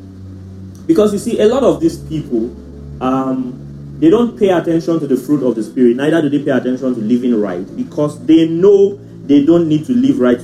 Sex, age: male, 30-49